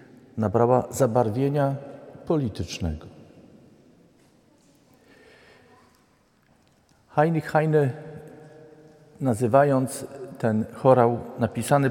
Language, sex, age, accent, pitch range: Polish, male, 50-69, native, 110-140 Hz